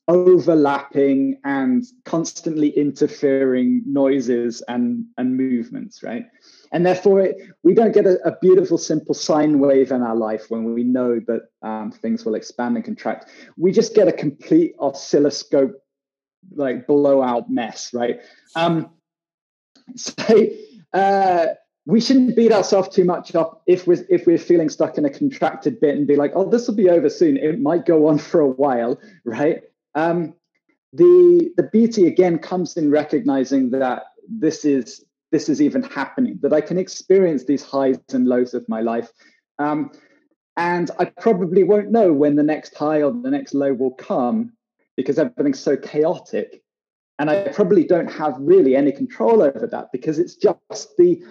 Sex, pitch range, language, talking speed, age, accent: male, 145-235 Hz, Danish, 165 wpm, 20-39, British